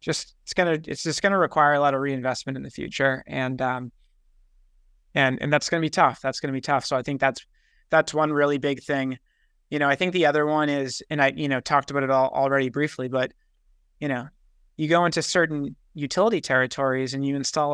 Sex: male